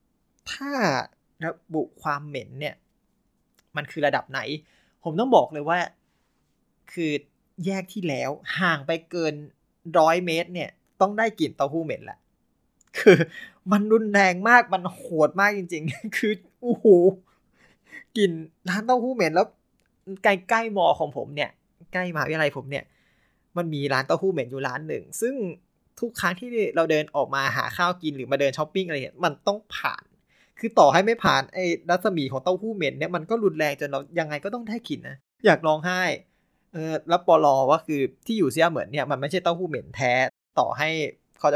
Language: Thai